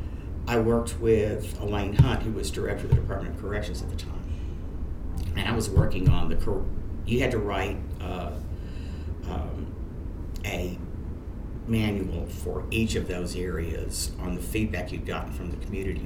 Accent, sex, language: American, male, English